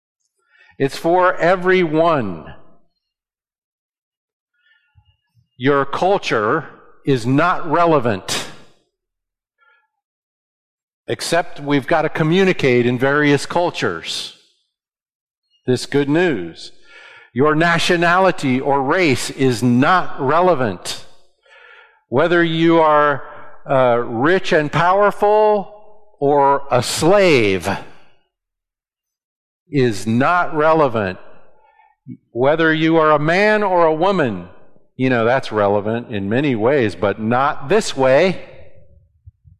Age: 50-69